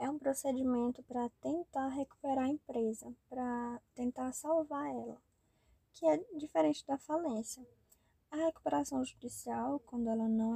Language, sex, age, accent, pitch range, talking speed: Portuguese, female, 10-29, Brazilian, 235-280 Hz, 130 wpm